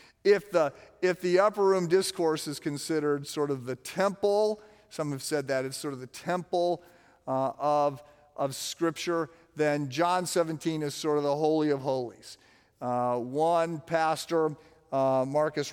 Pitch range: 140-175 Hz